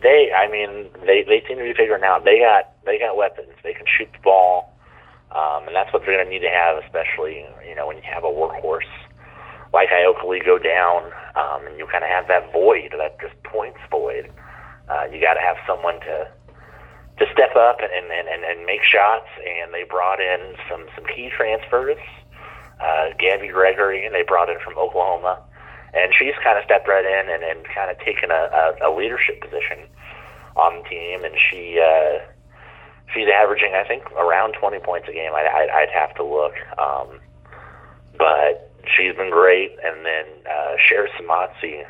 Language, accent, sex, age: English, American, male, 30-49